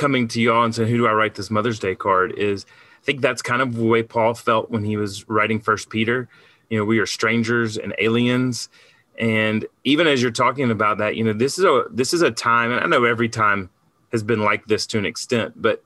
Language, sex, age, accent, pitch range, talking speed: English, male, 30-49, American, 115-140 Hz, 245 wpm